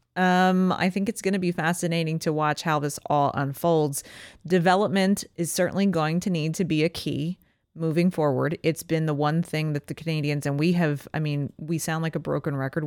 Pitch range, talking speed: 140-170 Hz, 210 wpm